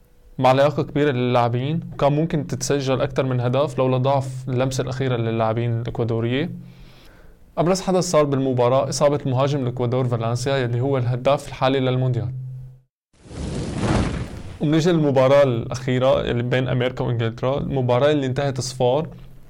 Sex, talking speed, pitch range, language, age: male, 120 wpm, 120-140 Hz, Arabic, 20-39